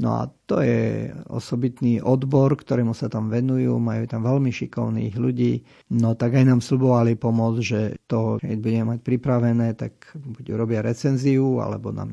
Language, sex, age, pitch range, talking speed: Slovak, male, 50-69, 120-145 Hz, 165 wpm